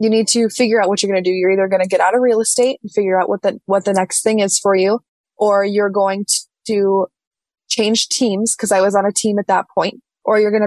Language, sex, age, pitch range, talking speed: English, female, 20-39, 190-215 Hz, 275 wpm